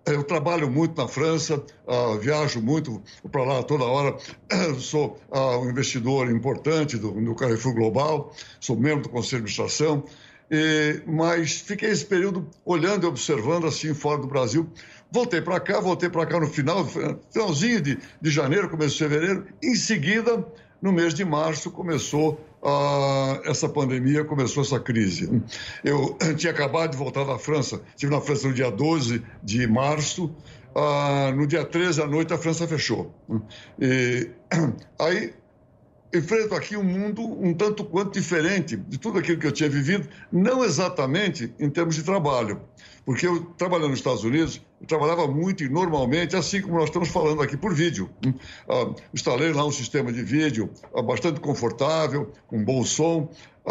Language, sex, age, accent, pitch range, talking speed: English, male, 60-79, Brazilian, 135-170 Hz, 165 wpm